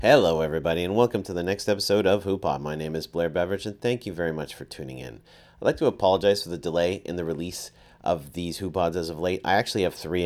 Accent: American